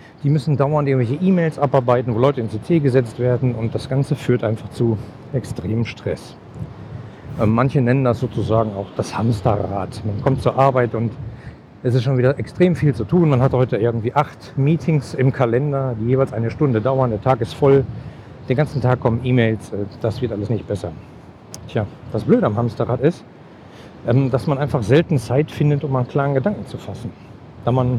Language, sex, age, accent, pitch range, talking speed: German, male, 50-69, German, 115-145 Hz, 185 wpm